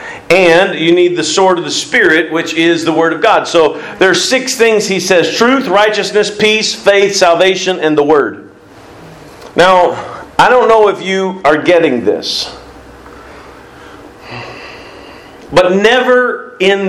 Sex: male